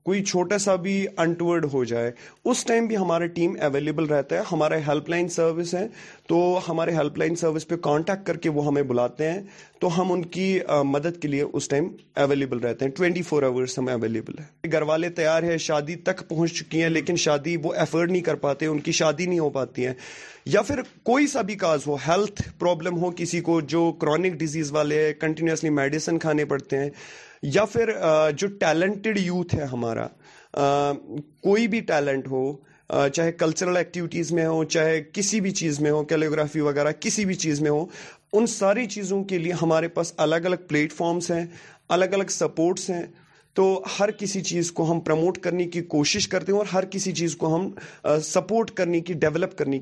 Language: Urdu